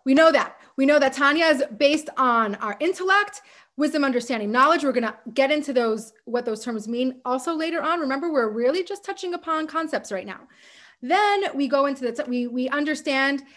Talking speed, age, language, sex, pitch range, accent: 195 wpm, 30-49, English, female, 240-300 Hz, American